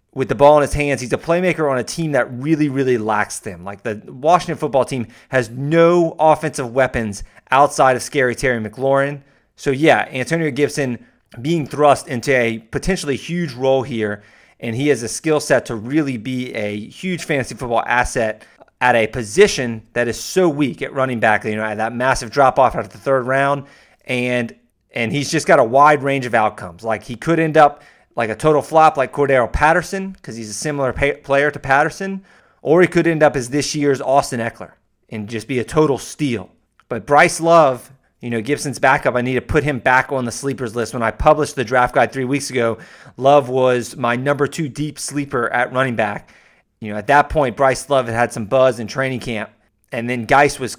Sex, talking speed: male, 210 wpm